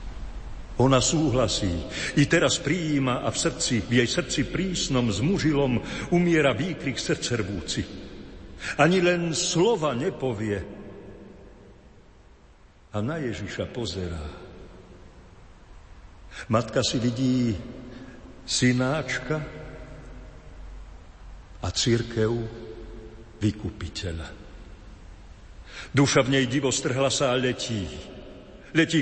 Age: 60-79